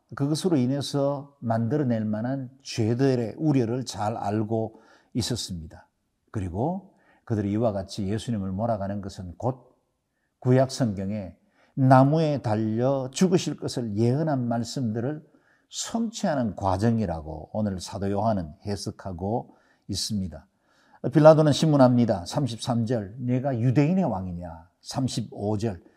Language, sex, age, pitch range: Korean, male, 50-69, 110-155 Hz